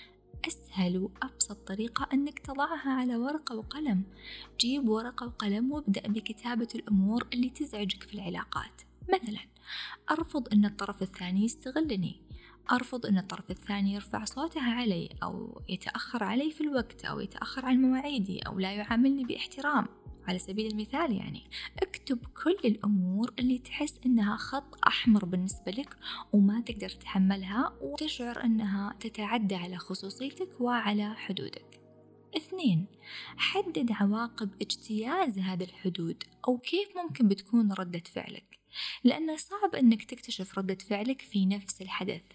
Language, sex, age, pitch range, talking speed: Arabic, female, 20-39, 200-270 Hz, 125 wpm